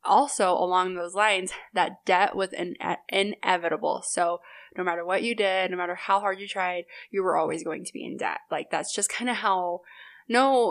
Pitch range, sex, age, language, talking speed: 180-210 Hz, female, 20-39, English, 195 wpm